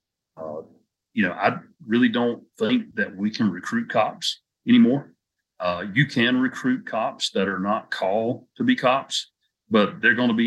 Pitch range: 100-120 Hz